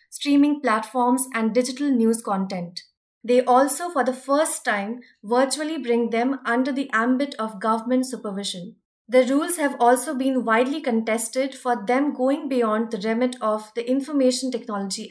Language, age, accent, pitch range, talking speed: English, 20-39, Indian, 230-270 Hz, 150 wpm